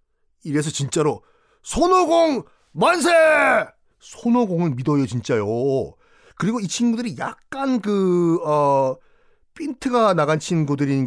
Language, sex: Korean, male